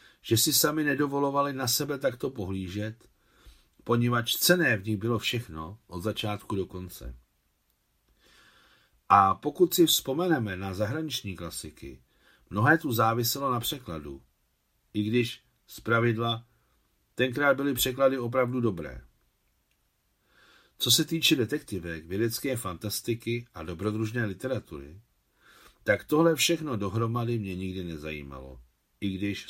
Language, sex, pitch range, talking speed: Czech, male, 90-125 Hz, 115 wpm